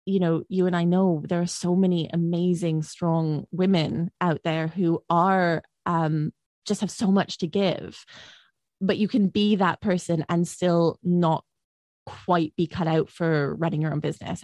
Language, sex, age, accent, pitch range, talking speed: English, female, 20-39, British, 155-180 Hz, 175 wpm